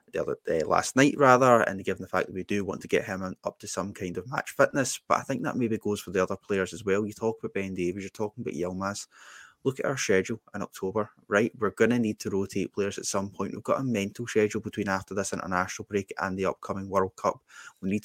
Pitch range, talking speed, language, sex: 95-110 Hz, 265 wpm, English, male